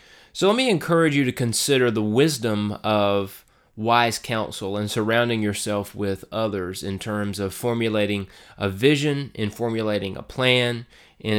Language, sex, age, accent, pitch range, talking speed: English, male, 30-49, American, 100-125 Hz, 150 wpm